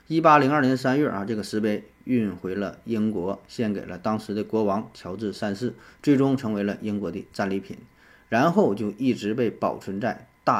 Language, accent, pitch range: Chinese, native, 100-125 Hz